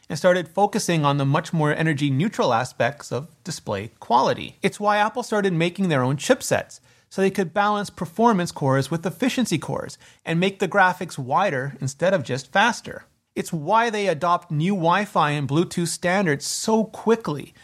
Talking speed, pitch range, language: 175 wpm, 150-205 Hz, English